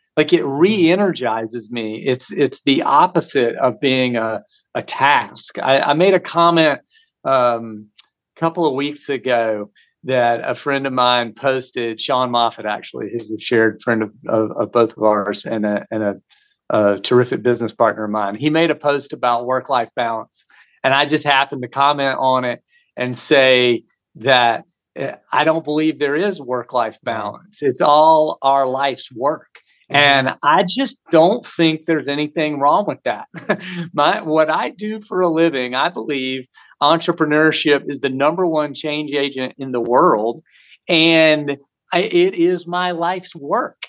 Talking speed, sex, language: 160 wpm, male, English